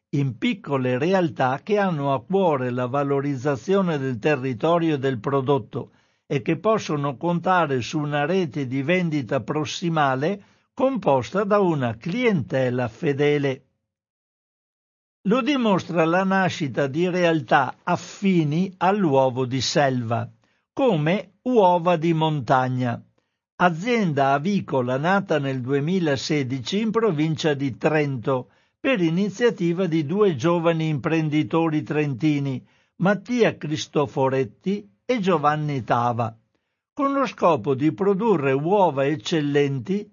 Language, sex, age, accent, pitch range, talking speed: Italian, male, 60-79, native, 135-185 Hz, 105 wpm